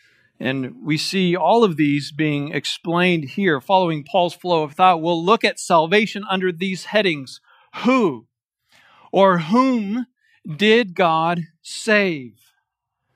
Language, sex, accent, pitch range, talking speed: English, male, American, 140-200 Hz, 125 wpm